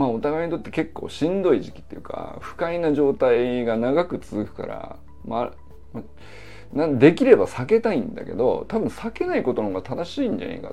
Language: Japanese